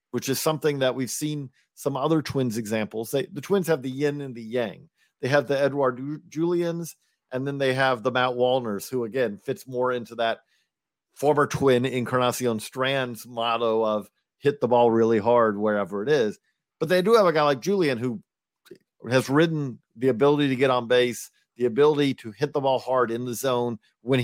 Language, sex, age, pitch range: English, male, 50-69, 125-160 Hz